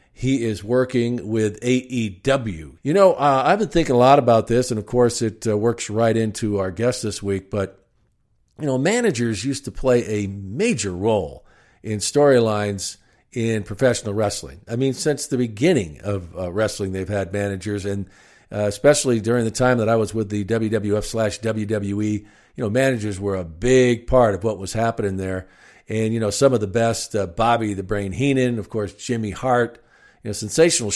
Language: English